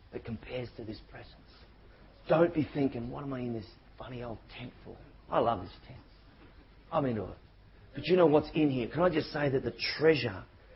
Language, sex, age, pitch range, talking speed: English, male, 40-59, 100-130 Hz, 200 wpm